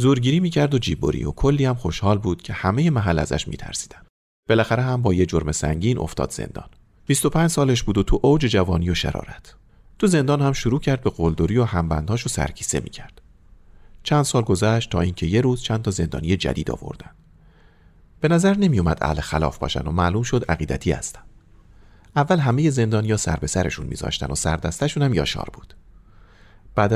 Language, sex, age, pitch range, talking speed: Persian, male, 40-59, 80-125 Hz, 170 wpm